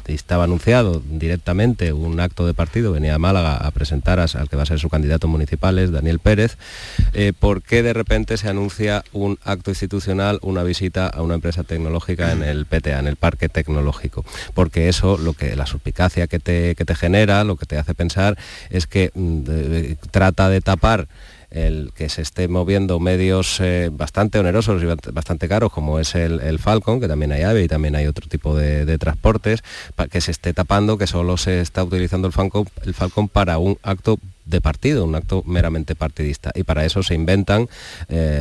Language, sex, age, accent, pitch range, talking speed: Spanish, male, 30-49, Spanish, 80-100 Hz, 195 wpm